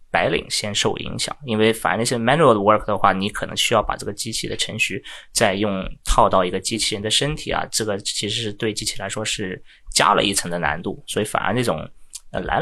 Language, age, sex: Chinese, 20-39, male